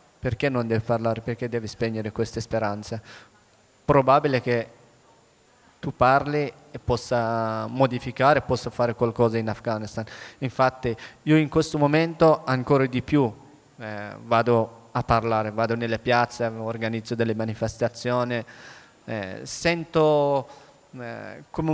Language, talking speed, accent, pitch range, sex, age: Italian, 120 wpm, native, 115-135 Hz, male, 20-39